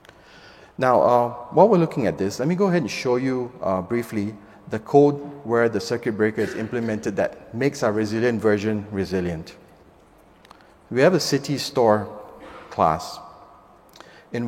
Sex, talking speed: male, 155 wpm